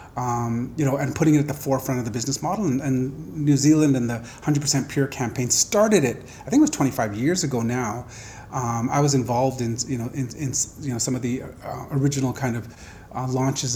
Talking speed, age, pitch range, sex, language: 225 wpm, 30-49, 125-145 Hz, male, English